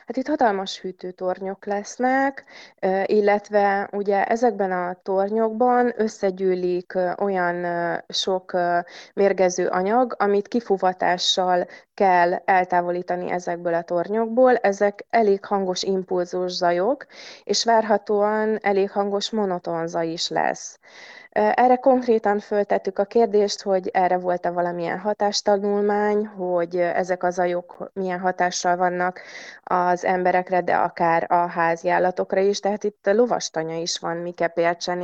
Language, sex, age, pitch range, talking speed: Hungarian, female, 20-39, 175-210 Hz, 115 wpm